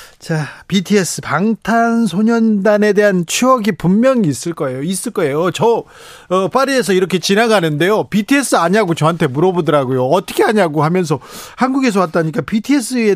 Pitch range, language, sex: 150-210 Hz, Korean, male